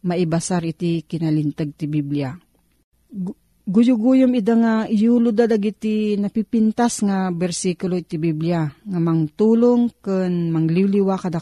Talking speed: 95 wpm